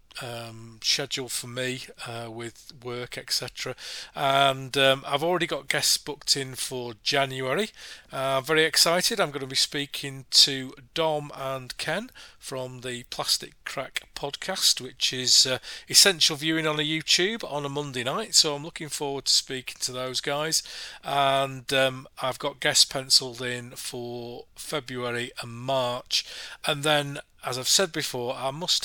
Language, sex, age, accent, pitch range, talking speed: English, male, 40-59, British, 125-155 Hz, 155 wpm